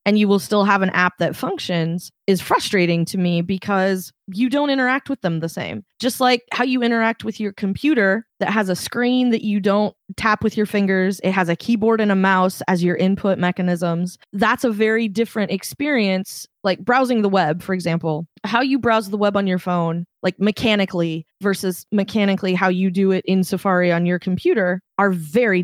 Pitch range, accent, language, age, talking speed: 180-220 Hz, American, English, 20-39, 200 wpm